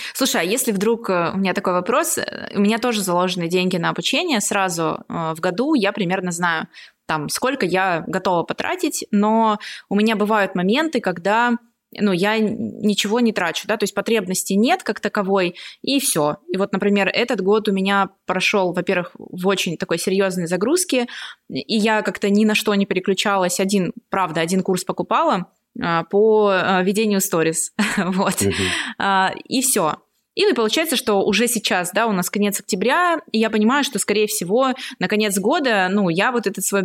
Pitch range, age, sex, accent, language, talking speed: 190-225 Hz, 20-39, female, native, Russian, 165 wpm